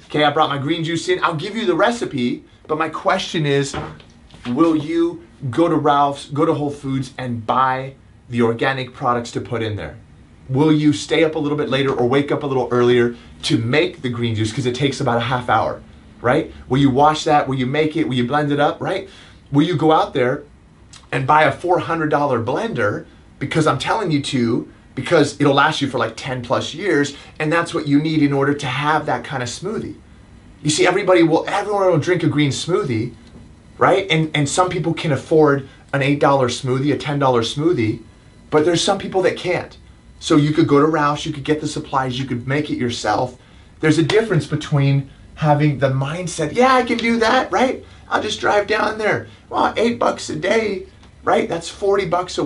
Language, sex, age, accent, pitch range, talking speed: English, male, 30-49, American, 130-160 Hz, 210 wpm